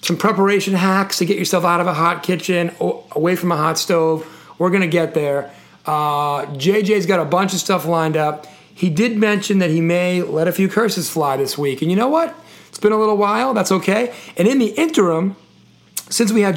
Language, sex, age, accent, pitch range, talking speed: English, male, 40-59, American, 165-195 Hz, 220 wpm